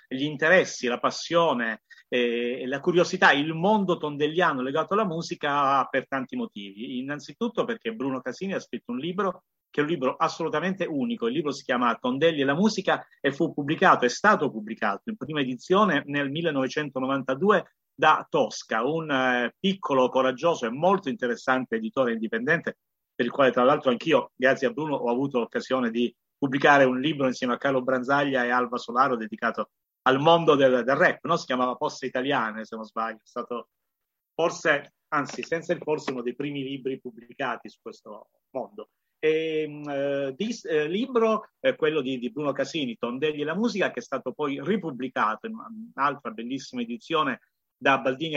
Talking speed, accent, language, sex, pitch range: 170 wpm, native, Italian, male, 130-180 Hz